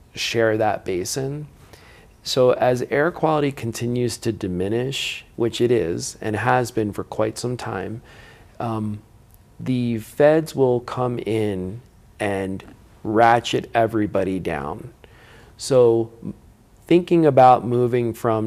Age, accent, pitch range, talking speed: 40-59, American, 105-125 Hz, 115 wpm